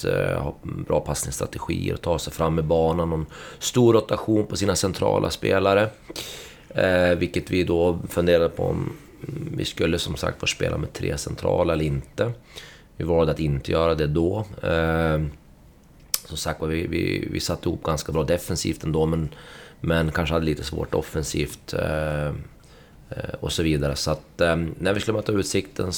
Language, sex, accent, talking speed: Swedish, male, native, 165 wpm